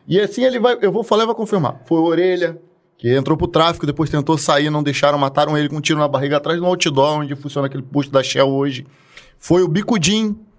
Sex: male